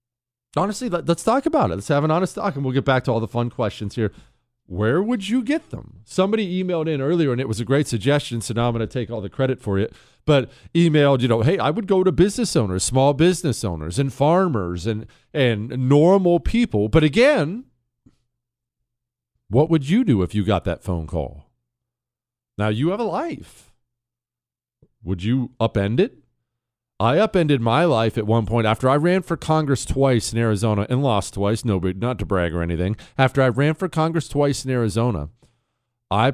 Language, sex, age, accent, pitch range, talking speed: English, male, 40-59, American, 110-150 Hz, 200 wpm